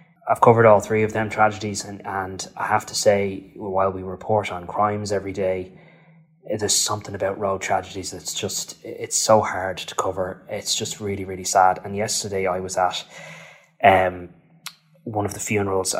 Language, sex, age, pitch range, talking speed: English, male, 20-39, 95-105 Hz, 175 wpm